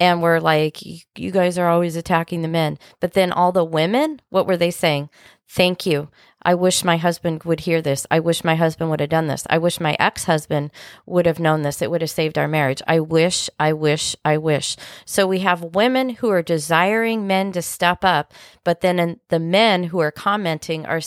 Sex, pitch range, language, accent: female, 155-185 Hz, English, American